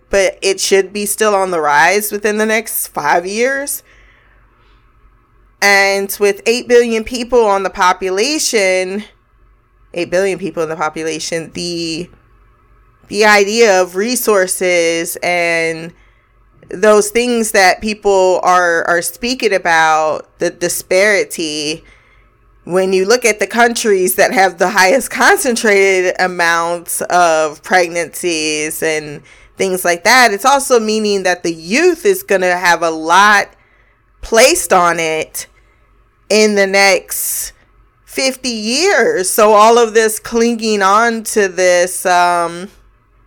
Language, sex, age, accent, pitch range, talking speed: English, female, 20-39, American, 170-220 Hz, 125 wpm